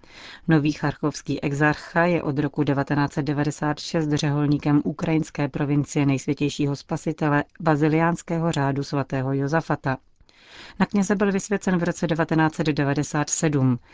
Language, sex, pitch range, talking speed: Czech, female, 140-165 Hz, 100 wpm